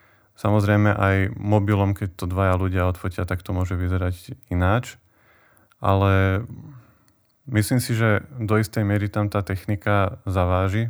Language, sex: Slovak, male